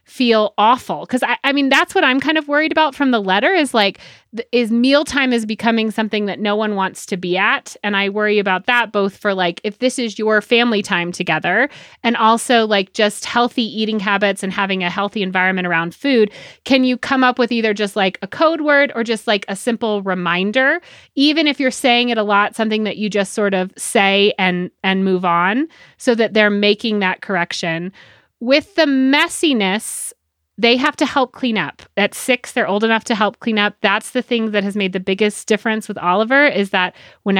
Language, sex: English, female